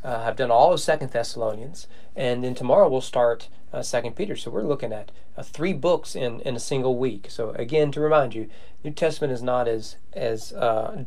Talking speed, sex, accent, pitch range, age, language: 210 wpm, male, American, 120-155 Hz, 40-59, English